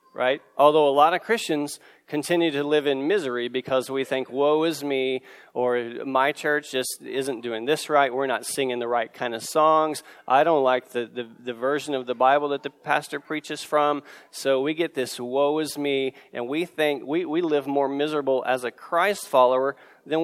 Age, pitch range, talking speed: 40-59, 130-155 Hz, 200 wpm